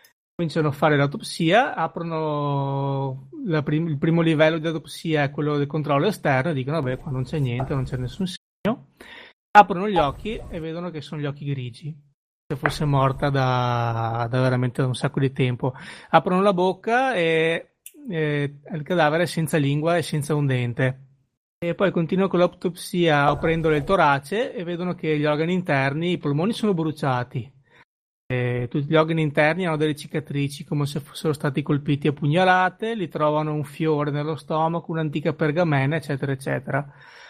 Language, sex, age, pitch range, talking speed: Italian, male, 30-49, 140-165 Hz, 170 wpm